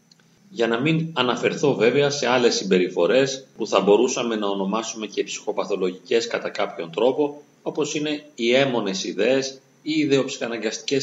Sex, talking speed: male, 140 wpm